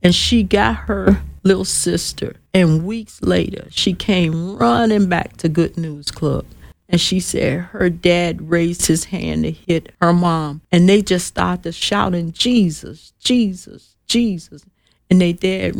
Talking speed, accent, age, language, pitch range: 150 wpm, American, 50-69, English, 155-205 Hz